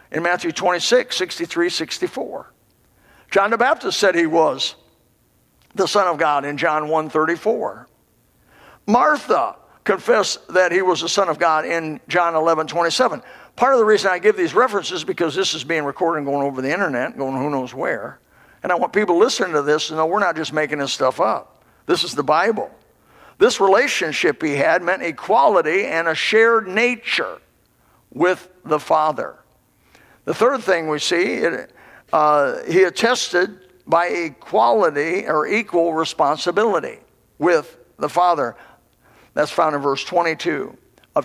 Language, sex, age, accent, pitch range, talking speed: English, male, 50-69, American, 160-220 Hz, 160 wpm